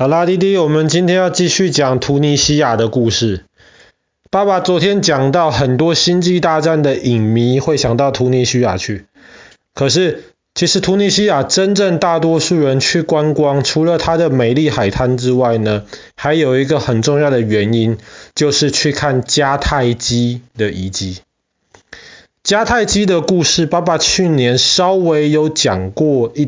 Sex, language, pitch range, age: male, Chinese, 120-170 Hz, 20-39